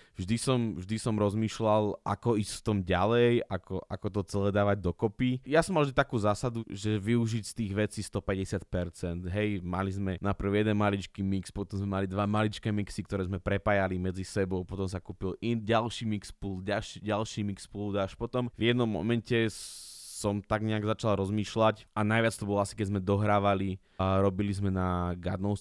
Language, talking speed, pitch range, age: Slovak, 180 wpm, 95-105 Hz, 20-39